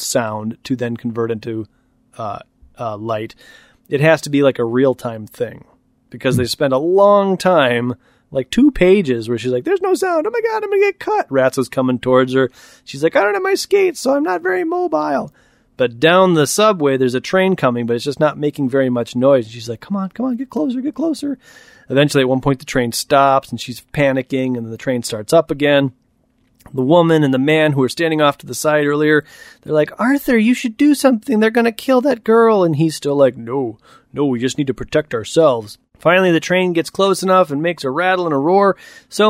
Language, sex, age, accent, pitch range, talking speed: English, male, 30-49, American, 130-195 Hz, 230 wpm